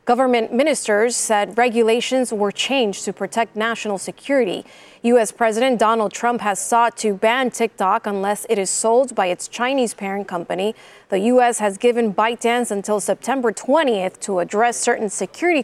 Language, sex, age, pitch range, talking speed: English, female, 20-39, 215-255 Hz, 155 wpm